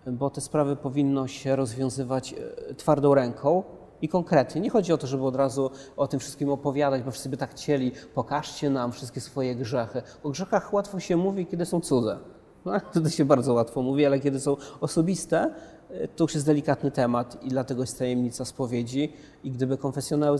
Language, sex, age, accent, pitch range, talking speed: Polish, male, 30-49, native, 125-150 Hz, 180 wpm